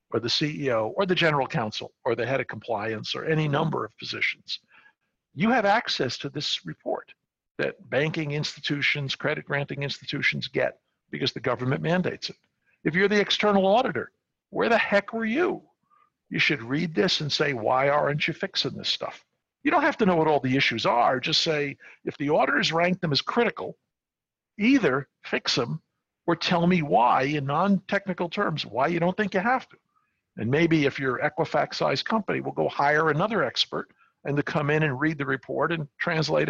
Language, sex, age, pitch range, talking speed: English, male, 60-79, 140-180 Hz, 185 wpm